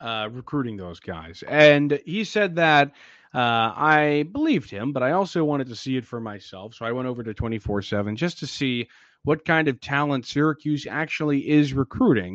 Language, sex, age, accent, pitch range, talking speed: English, male, 30-49, American, 115-160 Hz, 185 wpm